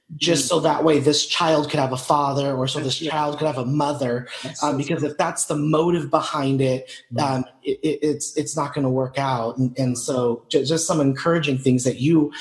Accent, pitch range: American, 135-165 Hz